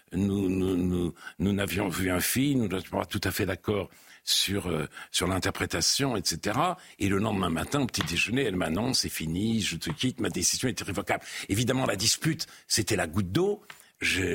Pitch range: 95-135 Hz